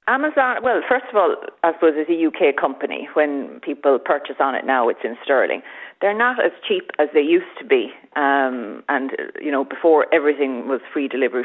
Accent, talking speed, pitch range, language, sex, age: Irish, 200 wpm, 135-195 Hz, English, female, 40-59